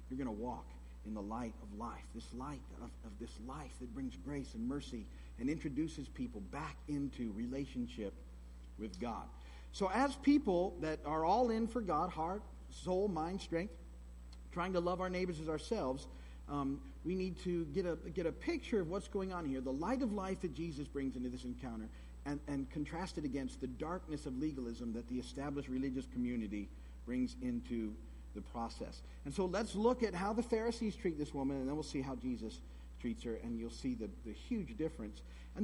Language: English